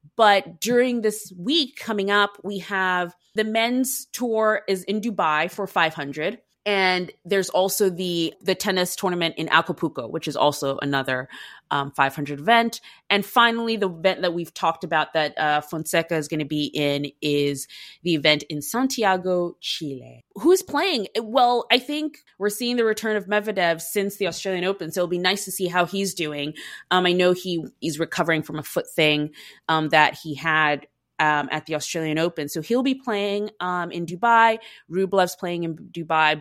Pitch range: 160-205 Hz